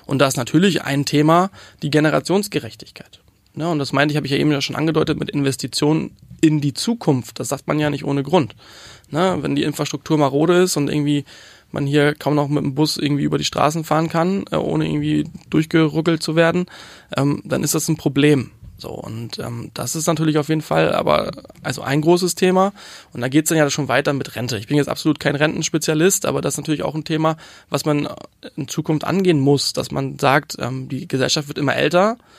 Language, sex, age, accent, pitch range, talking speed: German, male, 20-39, German, 140-160 Hz, 210 wpm